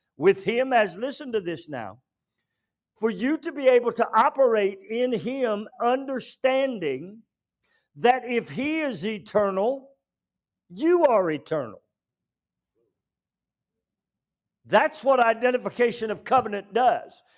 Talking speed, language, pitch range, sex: 105 wpm, English, 240-290 Hz, male